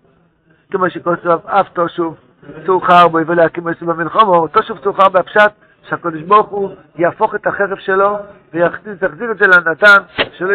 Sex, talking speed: male, 150 wpm